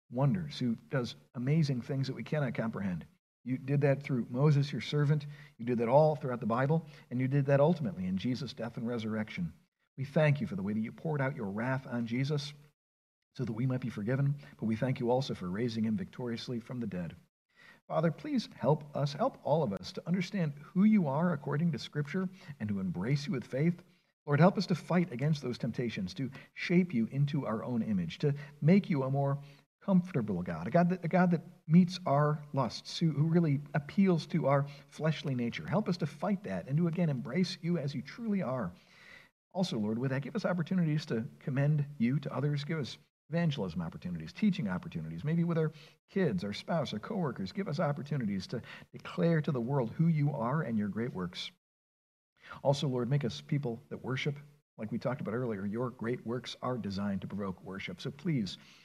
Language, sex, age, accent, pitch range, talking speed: English, male, 50-69, American, 130-175 Hz, 205 wpm